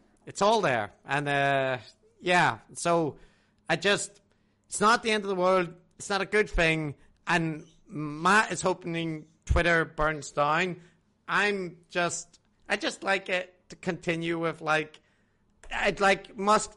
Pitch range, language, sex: 140-180 Hz, English, male